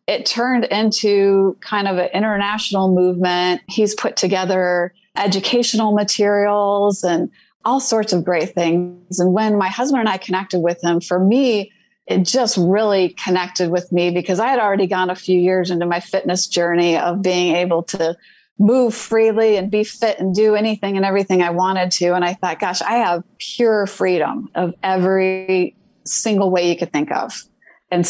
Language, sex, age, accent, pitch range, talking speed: English, female, 30-49, American, 180-210 Hz, 175 wpm